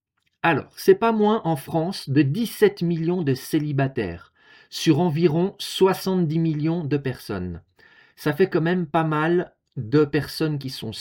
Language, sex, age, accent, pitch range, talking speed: French, male, 50-69, French, 135-190 Hz, 145 wpm